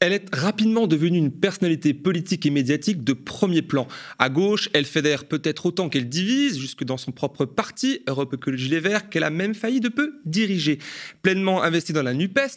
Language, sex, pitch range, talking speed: French, male, 130-180 Hz, 195 wpm